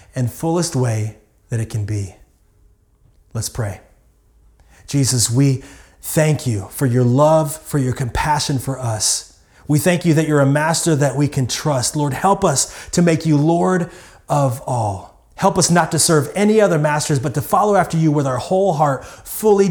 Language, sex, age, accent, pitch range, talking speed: English, male, 30-49, American, 115-150 Hz, 180 wpm